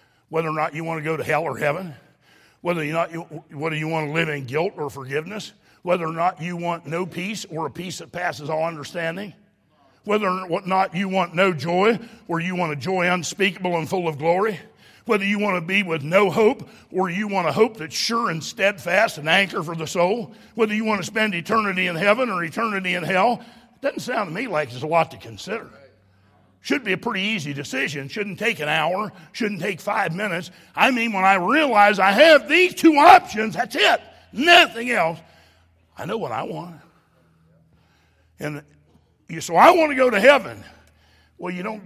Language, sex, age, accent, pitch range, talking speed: English, male, 50-69, American, 150-210 Hz, 205 wpm